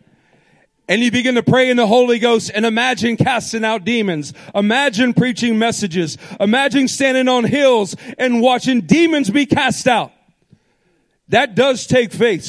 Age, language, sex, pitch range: 40-59, English, male, 195-265 Hz